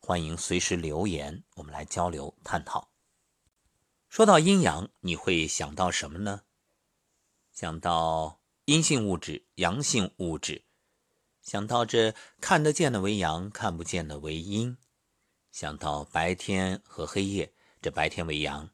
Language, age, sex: Chinese, 50-69, male